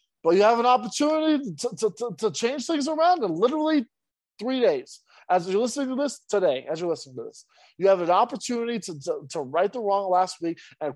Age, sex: 20-39, male